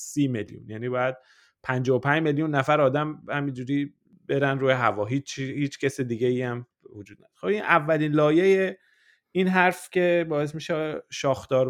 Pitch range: 140-175 Hz